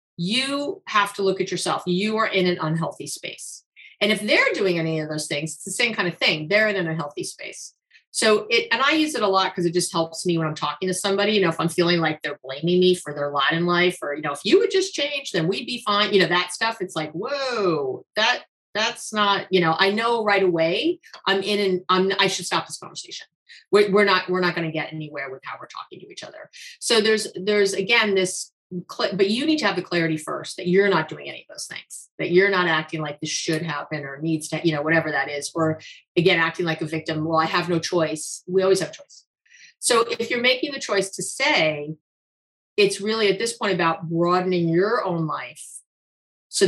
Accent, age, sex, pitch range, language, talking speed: American, 30-49, female, 165-210 Hz, English, 240 wpm